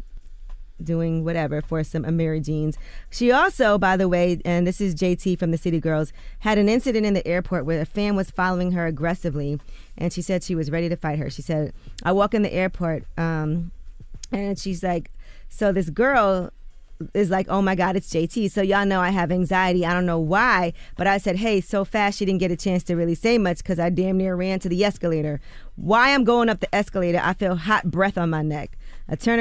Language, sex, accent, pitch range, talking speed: English, female, American, 170-200 Hz, 225 wpm